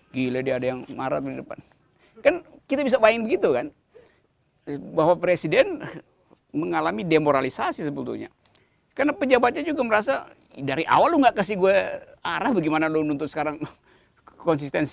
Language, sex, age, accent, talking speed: Indonesian, male, 50-69, native, 135 wpm